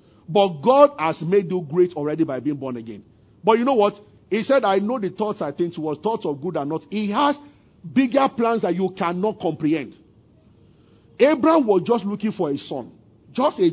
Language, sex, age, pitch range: English, male, 50-69, 160-225 Hz